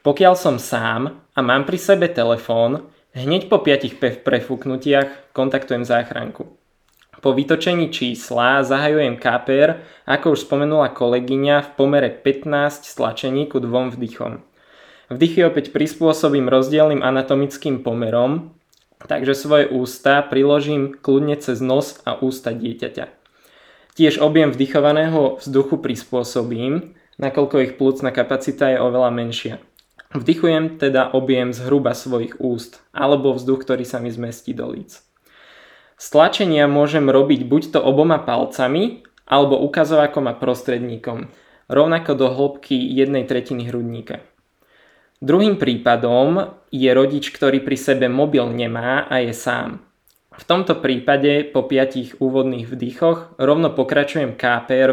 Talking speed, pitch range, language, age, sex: 120 wpm, 125-145 Hz, Czech, 20-39, male